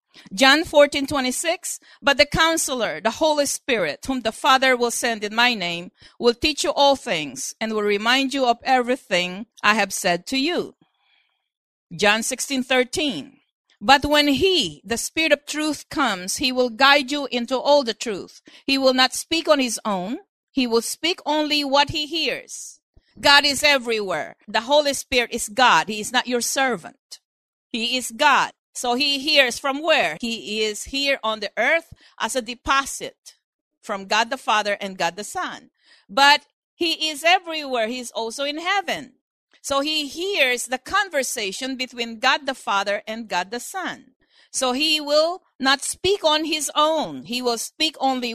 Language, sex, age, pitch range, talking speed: English, female, 50-69, 230-300 Hz, 175 wpm